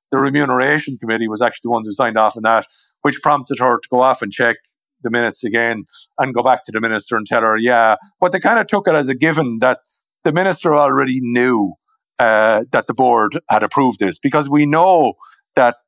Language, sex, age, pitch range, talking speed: English, male, 50-69, 115-160 Hz, 220 wpm